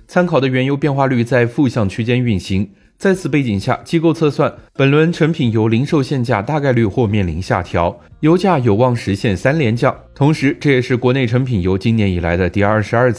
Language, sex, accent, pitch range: Chinese, male, native, 105-150 Hz